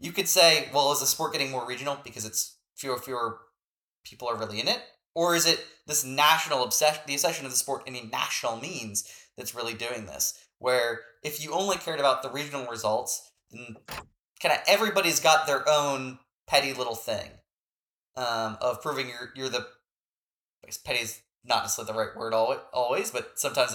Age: 20-39